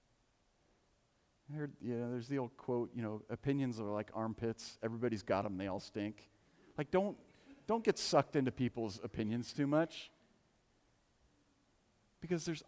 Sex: male